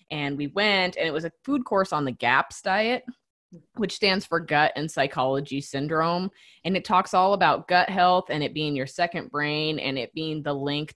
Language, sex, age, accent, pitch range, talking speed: English, female, 20-39, American, 155-210 Hz, 210 wpm